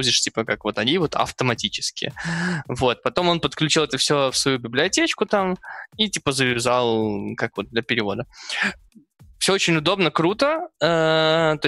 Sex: male